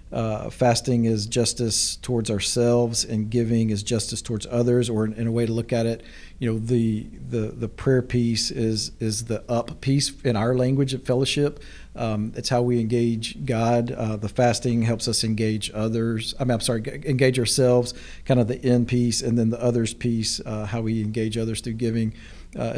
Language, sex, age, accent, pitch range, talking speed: English, male, 40-59, American, 110-125 Hz, 190 wpm